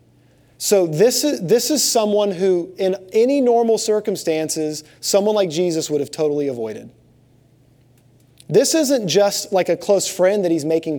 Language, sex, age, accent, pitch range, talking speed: English, male, 30-49, American, 135-185 Hz, 155 wpm